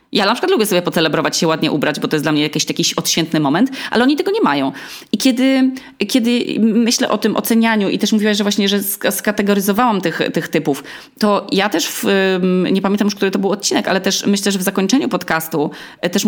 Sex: female